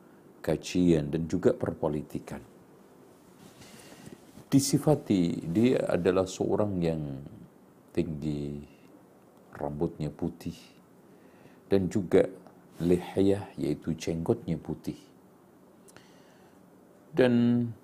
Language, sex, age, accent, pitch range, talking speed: Indonesian, male, 50-69, native, 80-115 Hz, 65 wpm